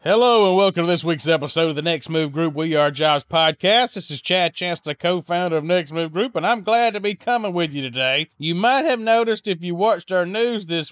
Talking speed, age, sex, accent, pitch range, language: 245 wpm, 30-49, male, American, 150-195 Hz, English